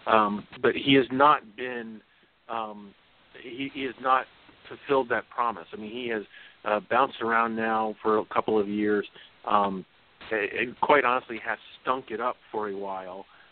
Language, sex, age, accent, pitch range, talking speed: English, male, 40-59, American, 105-125 Hz, 170 wpm